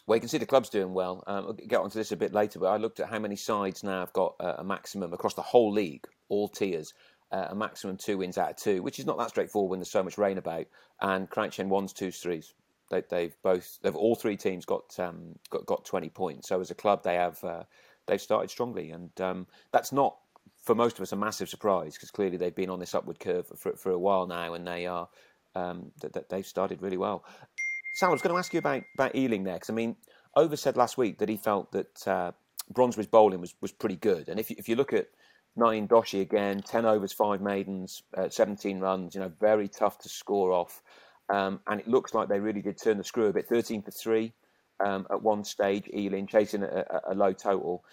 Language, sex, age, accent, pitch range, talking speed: English, male, 30-49, British, 95-115 Hz, 245 wpm